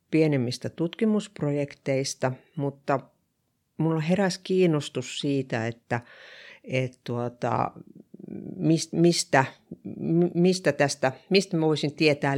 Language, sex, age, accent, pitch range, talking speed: Finnish, female, 50-69, native, 135-175 Hz, 65 wpm